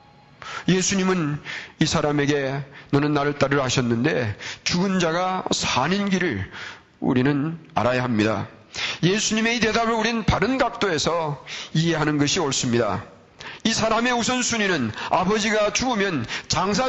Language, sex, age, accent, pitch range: Korean, male, 40-59, native, 145-225 Hz